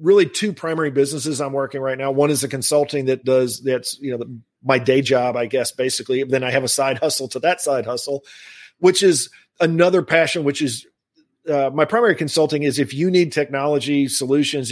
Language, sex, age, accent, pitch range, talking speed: English, male, 40-59, American, 130-145 Hz, 205 wpm